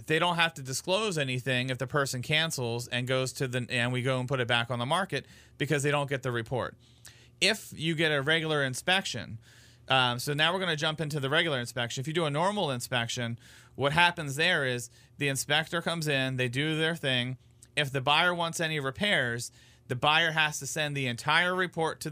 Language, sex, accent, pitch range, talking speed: English, male, American, 120-155 Hz, 215 wpm